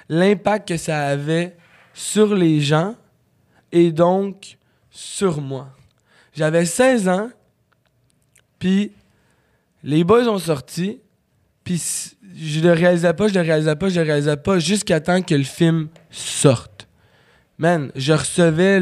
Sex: male